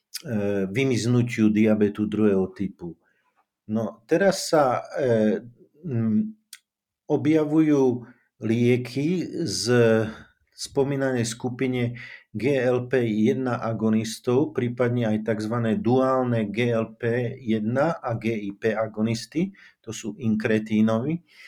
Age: 50-69